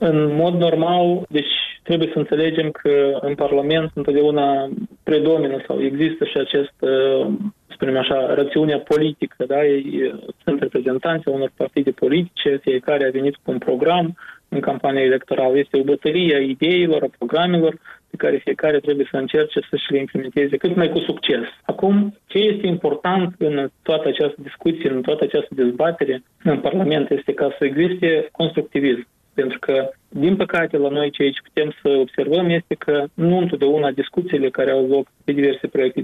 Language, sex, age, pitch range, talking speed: Romanian, male, 20-39, 140-170 Hz, 160 wpm